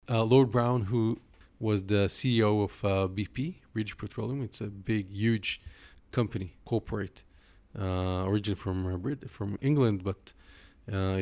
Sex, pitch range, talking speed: male, 100-115 Hz, 145 wpm